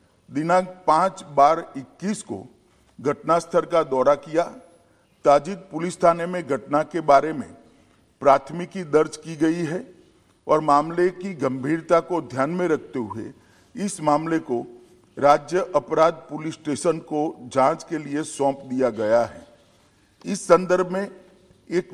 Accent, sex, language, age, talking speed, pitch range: Indian, male, English, 50-69, 135 wpm, 145-180 Hz